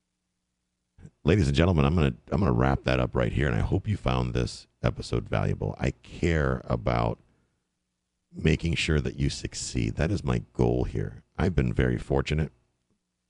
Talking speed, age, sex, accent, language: 175 wpm, 50-69, male, American, English